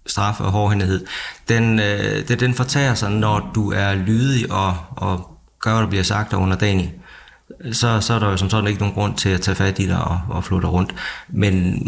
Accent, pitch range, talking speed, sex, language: native, 90-105 Hz, 215 wpm, male, Danish